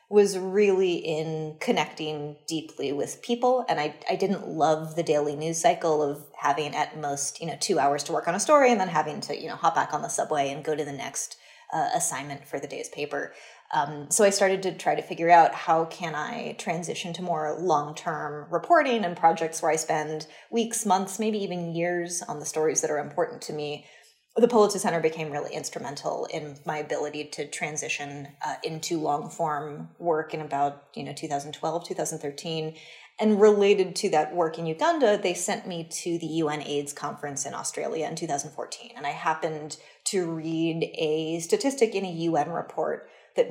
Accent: American